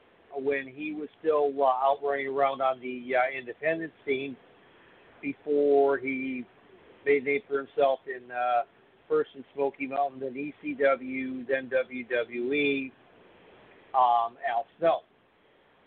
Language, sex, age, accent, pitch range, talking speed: English, male, 50-69, American, 135-185 Hz, 125 wpm